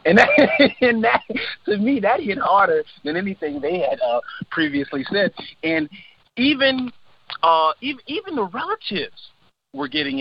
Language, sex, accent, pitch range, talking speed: English, male, American, 145-210 Hz, 145 wpm